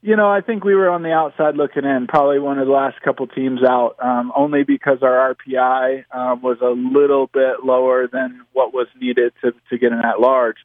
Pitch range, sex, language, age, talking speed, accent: 125-140 Hz, male, English, 20-39, 225 wpm, American